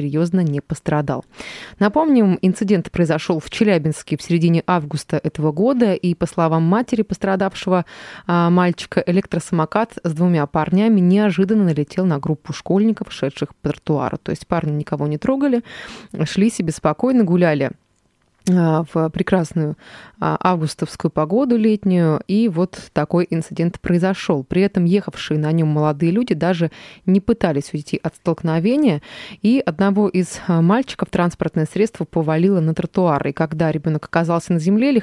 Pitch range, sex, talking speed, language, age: 155-200 Hz, female, 135 wpm, Russian, 20-39